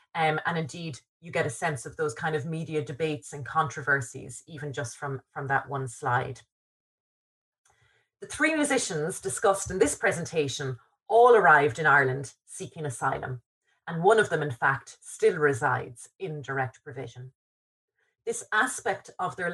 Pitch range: 140-195 Hz